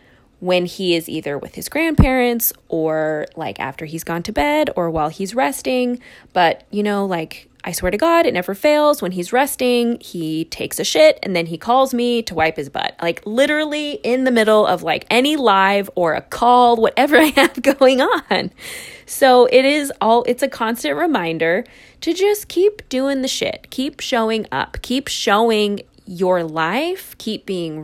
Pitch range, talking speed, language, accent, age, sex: 165-255 Hz, 185 wpm, English, American, 20-39, female